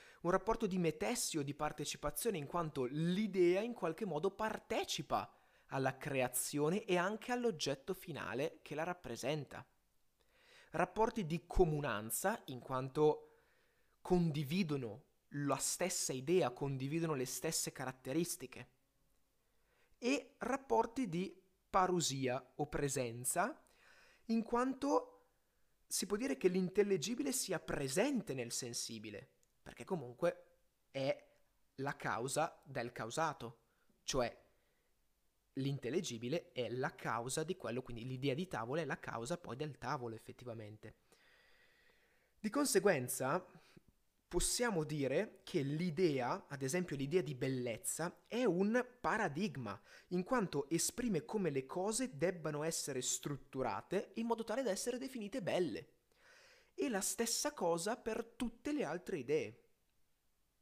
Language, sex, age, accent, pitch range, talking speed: Italian, male, 30-49, native, 135-220 Hz, 115 wpm